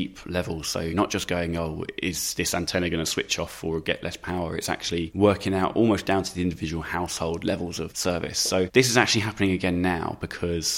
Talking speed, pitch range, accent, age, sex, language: 210 wpm, 80-95 Hz, British, 20-39, male, English